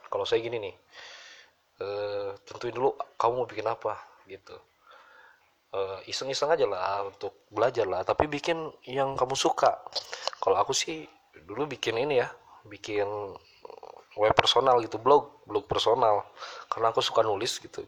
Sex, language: male, Indonesian